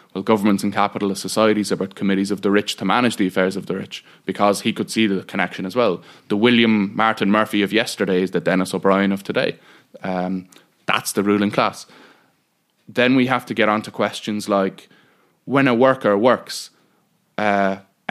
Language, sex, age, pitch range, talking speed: English, male, 20-39, 95-110 Hz, 180 wpm